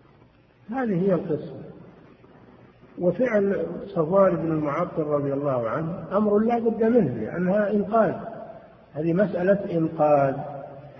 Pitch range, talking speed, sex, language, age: 135-180 Hz, 105 wpm, male, Arabic, 50-69